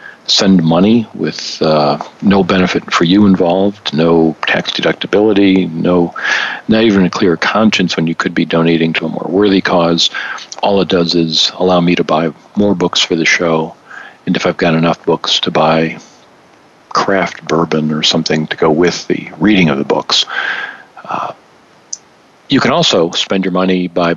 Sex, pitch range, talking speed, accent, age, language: male, 80-95 Hz, 170 wpm, American, 50-69, English